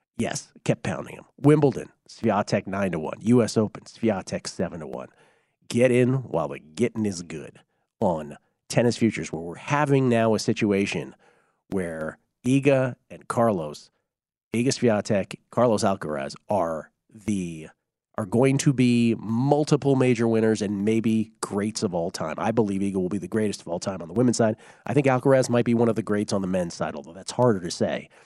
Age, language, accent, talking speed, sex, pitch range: 40-59, English, American, 185 wpm, male, 110-140 Hz